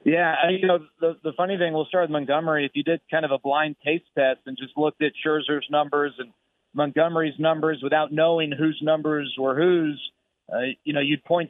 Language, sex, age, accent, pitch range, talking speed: English, male, 40-59, American, 145-170 Hz, 220 wpm